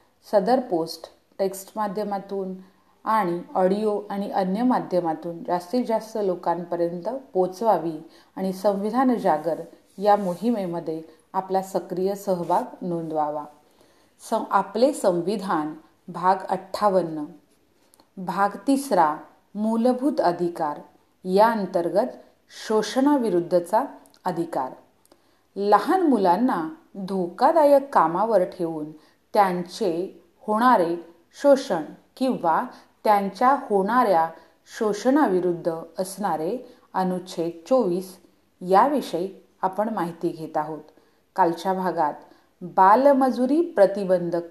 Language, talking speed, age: Hindi, 70 wpm, 40-59